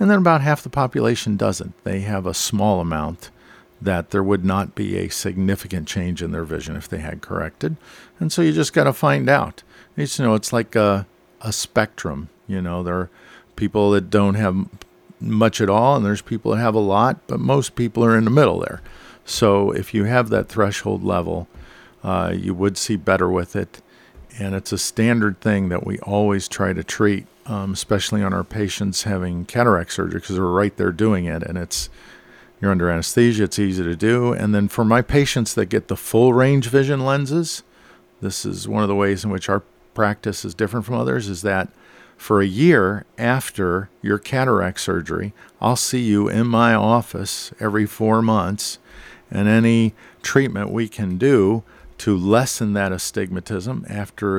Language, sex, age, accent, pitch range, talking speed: English, male, 50-69, American, 95-115 Hz, 185 wpm